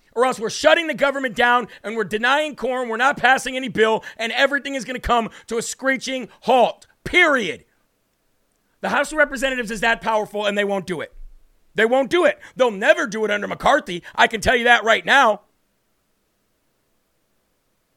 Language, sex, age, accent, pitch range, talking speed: English, male, 50-69, American, 210-265 Hz, 185 wpm